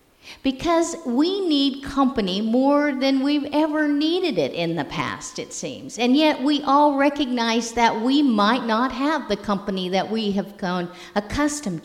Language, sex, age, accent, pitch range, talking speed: English, female, 50-69, American, 185-255 Hz, 160 wpm